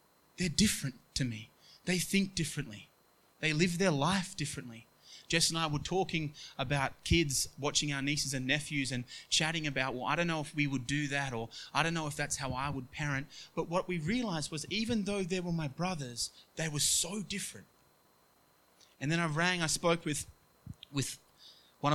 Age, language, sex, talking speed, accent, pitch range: 20-39, English, male, 190 wpm, Australian, 140-180 Hz